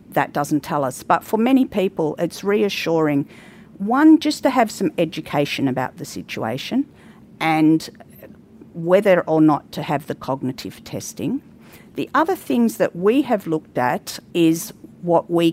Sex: female